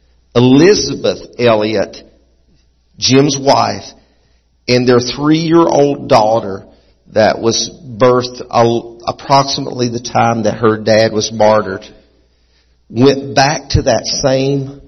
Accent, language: American, English